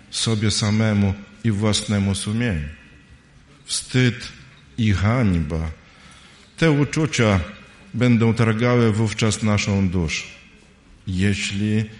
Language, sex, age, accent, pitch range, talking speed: Polish, male, 50-69, native, 105-135 Hz, 80 wpm